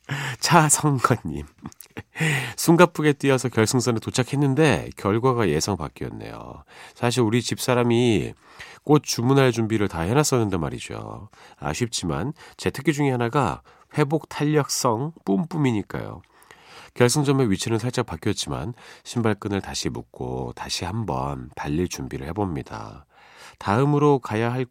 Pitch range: 95-140 Hz